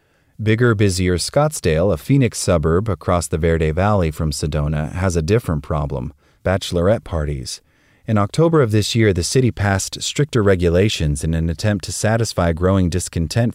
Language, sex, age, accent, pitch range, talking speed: English, male, 30-49, American, 80-105 Hz, 155 wpm